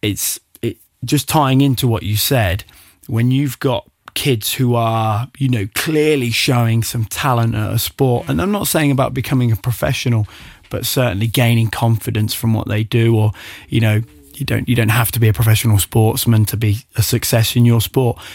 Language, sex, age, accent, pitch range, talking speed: English, male, 20-39, British, 110-130 Hz, 190 wpm